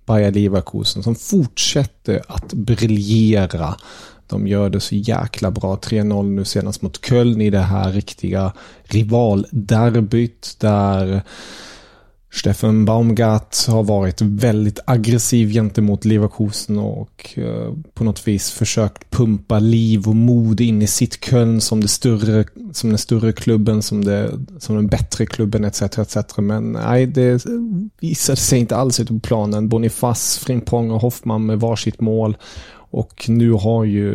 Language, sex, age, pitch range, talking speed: Swedish, male, 30-49, 105-120 Hz, 135 wpm